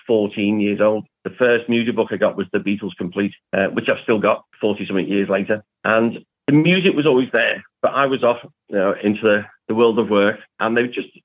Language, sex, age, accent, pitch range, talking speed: English, male, 40-59, British, 100-115 Hz, 230 wpm